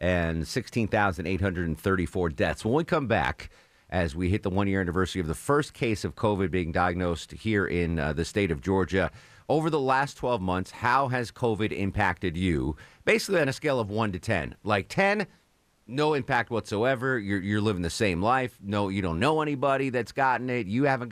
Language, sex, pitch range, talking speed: English, male, 90-125 Hz, 195 wpm